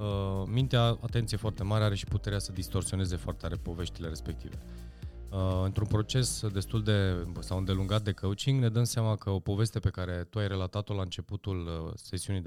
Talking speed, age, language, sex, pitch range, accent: 170 wpm, 20-39, Romanian, male, 95-115 Hz, native